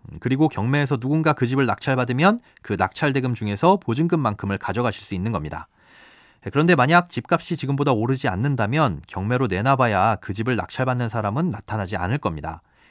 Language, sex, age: Korean, male, 30-49